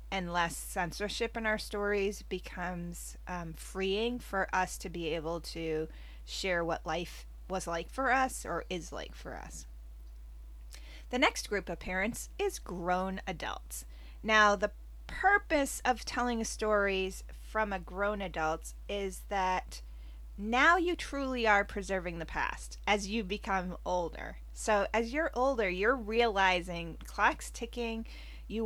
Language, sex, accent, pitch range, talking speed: English, female, American, 170-225 Hz, 140 wpm